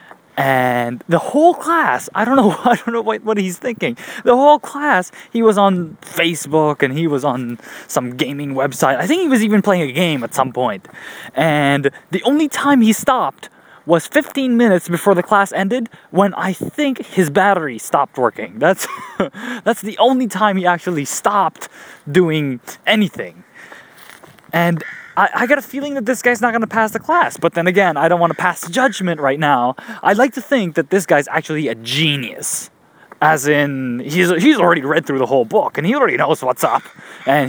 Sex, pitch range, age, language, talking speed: male, 150-235 Hz, 20-39, English, 195 wpm